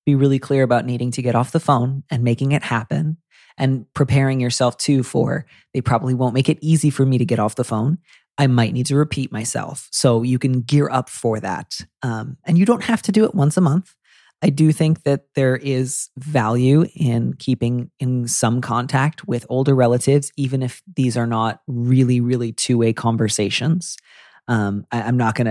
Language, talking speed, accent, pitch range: English, 200 wpm, American, 120-145 Hz